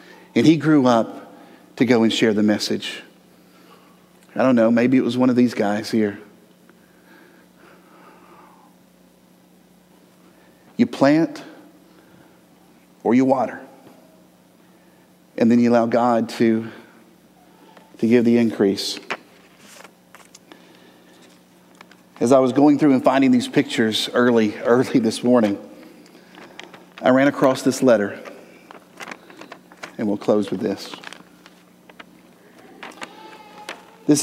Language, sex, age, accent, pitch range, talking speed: English, male, 40-59, American, 105-140 Hz, 105 wpm